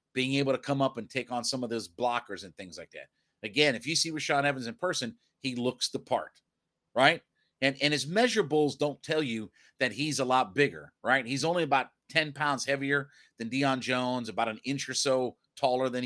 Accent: American